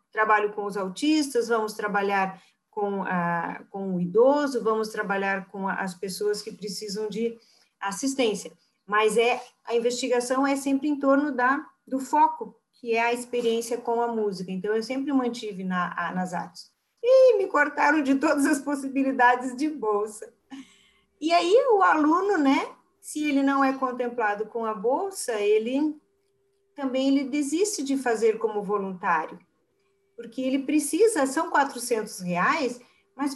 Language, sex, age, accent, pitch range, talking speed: Portuguese, female, 40-59, Brazilian, 215-295 Hz, 140 wpm